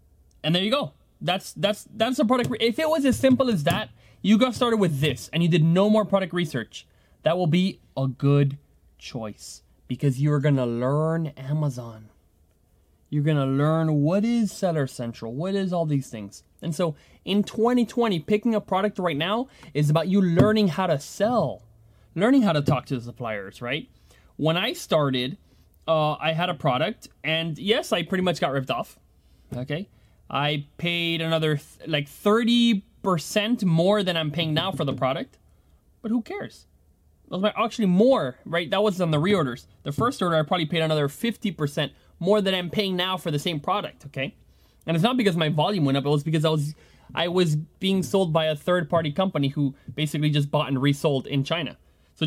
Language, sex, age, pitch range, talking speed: English, male, 20-39, 140-195 Hz, 195 wpm